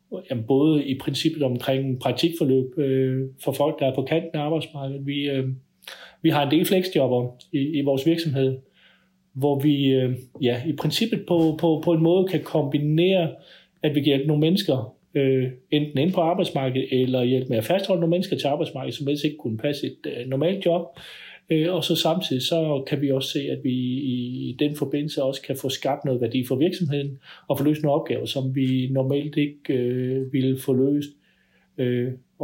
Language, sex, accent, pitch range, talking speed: Danish, male, native, 130-155 Hz, 190 wpm